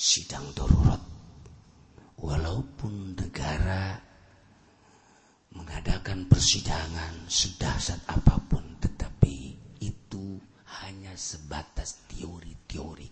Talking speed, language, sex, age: 60 wpm, Indonesian, male, 40-59